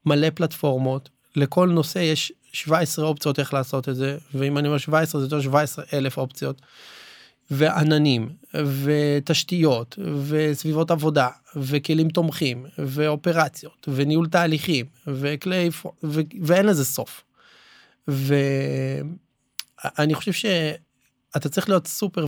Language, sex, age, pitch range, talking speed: Hebrew, male, 20-39, 135-155 Hz, 105 wpm